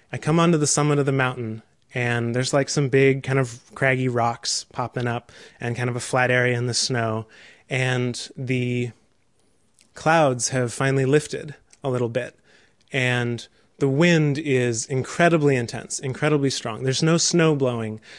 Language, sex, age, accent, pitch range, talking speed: English, male, 20-39, American, 125-145 Hz, 160 wpm